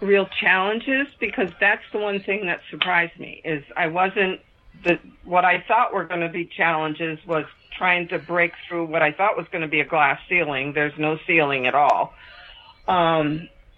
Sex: female